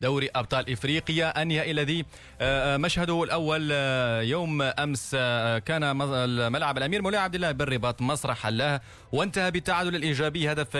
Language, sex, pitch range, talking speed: Arabic, male, 130-165 Hz, 120 wpm